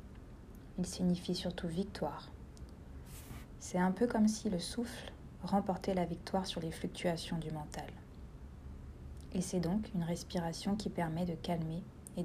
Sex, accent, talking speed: female, French, 140 wpm